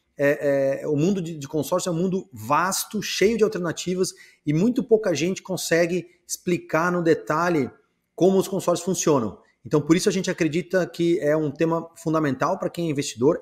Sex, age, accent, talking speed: male, 30-49, Brazilian, 175 wpm